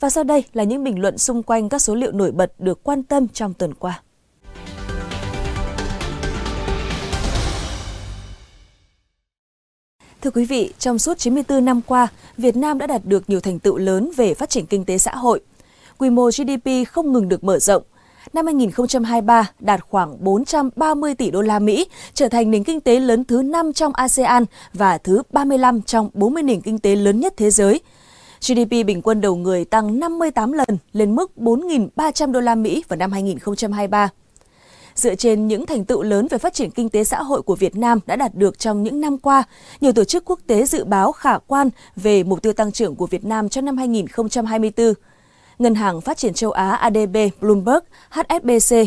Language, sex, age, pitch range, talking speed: Vietnamese, female, 20-39, 195-260 Hz, 185 wpm